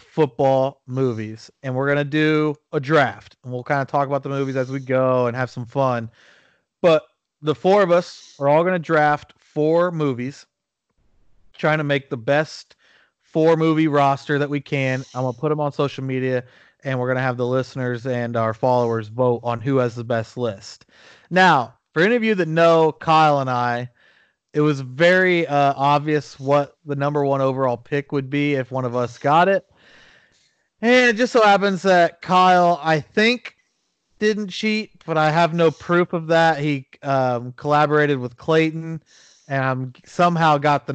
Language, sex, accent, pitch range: English, male, American, 130-165 Hz